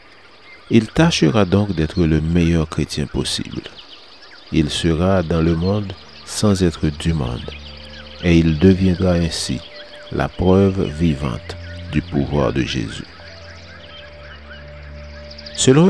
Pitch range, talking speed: 75-100 Hz, 110 wpm